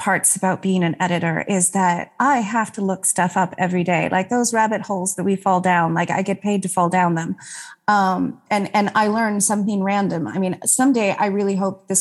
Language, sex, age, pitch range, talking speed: English, female, 30-49, 185-235 Hz, 225 wpm